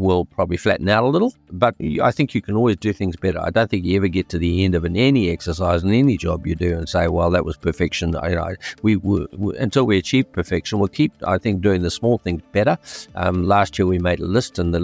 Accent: Australian